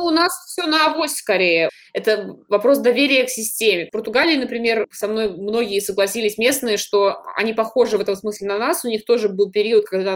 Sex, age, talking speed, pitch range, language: female, 20-39, 195 wpm, 195-240 Hz, Russian